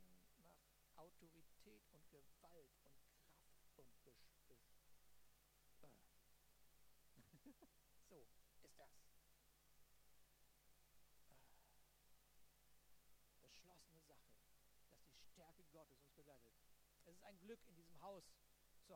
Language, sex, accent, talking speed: German, male, German, 85 wpm